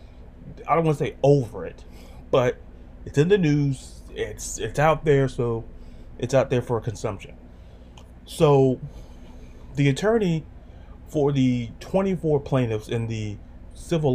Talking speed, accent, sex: 135 wpm, American, male